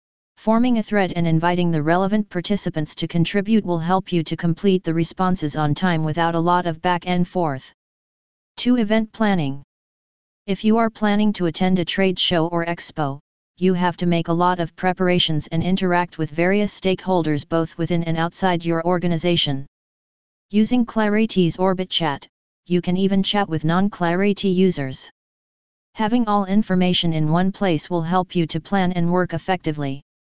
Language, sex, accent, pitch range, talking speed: English, female, American, 165-195 Hz, 165 wpm